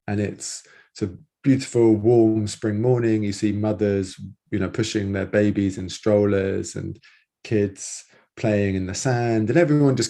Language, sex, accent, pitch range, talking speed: English, male, British, 100-115 Hz, 160 wpm